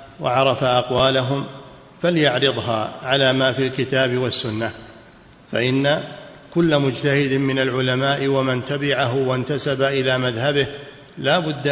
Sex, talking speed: male, 100 wpm